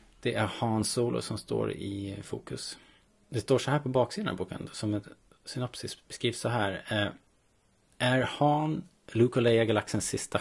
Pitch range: 100-125 Hz